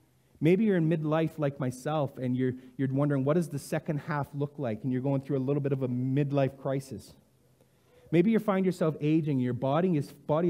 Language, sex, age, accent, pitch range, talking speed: English, male, 30-49, American, 120-155 Hz, 210 wpm